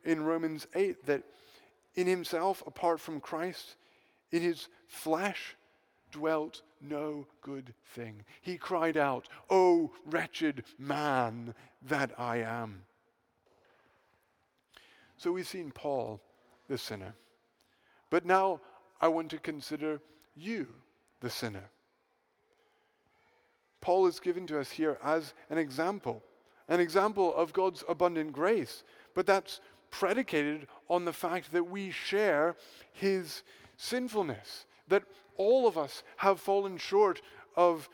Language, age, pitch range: English, 50-69, 150-190 Hz